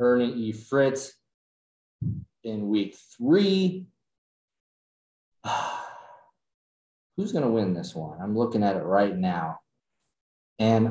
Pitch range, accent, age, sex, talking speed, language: 115-150 Hz, American, 30-49, male, 105 wpm, English